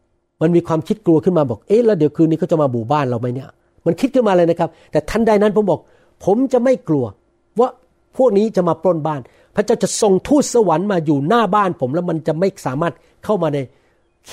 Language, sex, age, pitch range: Thai, male, 60-79, 140-190 Hz